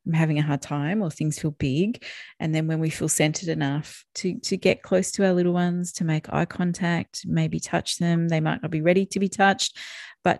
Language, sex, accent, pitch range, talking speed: English, female, Australian, 165-185 Hz, 225 wpm